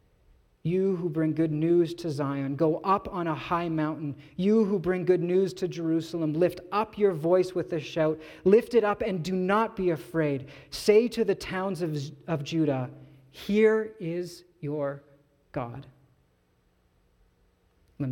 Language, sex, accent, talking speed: English, male, American, 150 wpm